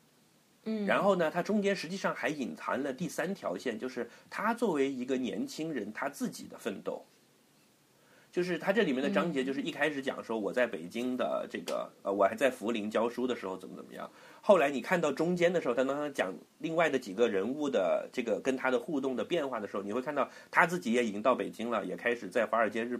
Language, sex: Chinese, male